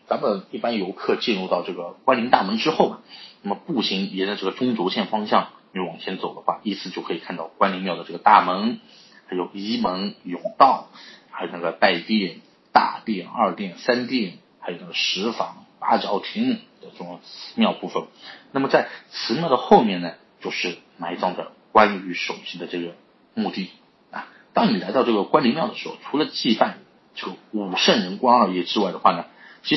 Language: Chinese